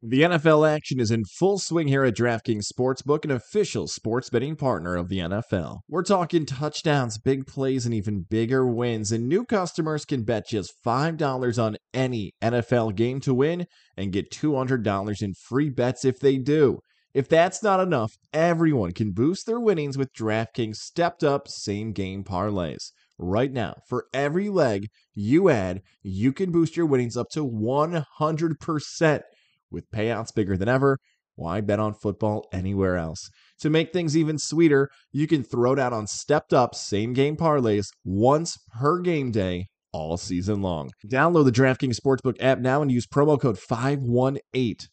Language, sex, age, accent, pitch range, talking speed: English, male, 20-39, American, 105-150 Hz, 165 wpm